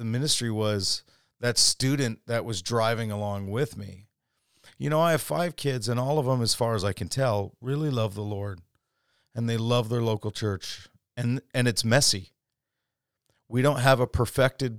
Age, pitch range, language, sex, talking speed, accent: 40-59, 115-145 Hz, English, male, 185 wpm, American